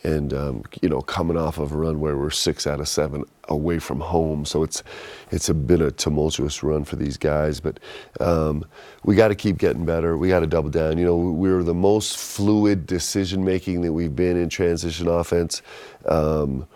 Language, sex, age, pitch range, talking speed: English, male, 40-59, 80-90 Hz, 205 wpm